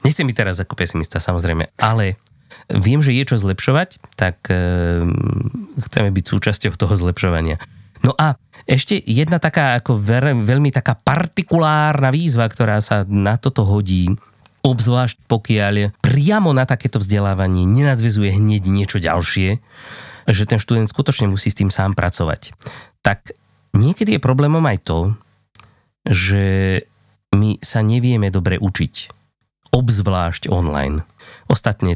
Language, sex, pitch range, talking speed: Slovak, male, 100-130 Hz, 130 wpm